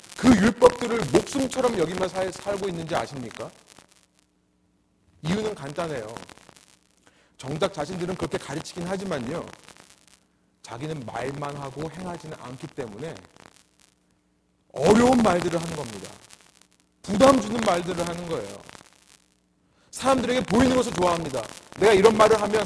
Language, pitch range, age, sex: Korean, 140-215 Hz, 40-59, male